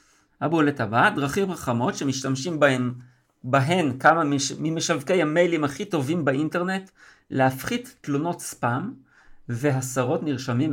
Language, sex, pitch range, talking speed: Hebrew, male, 130-170 Hz, 105 wpm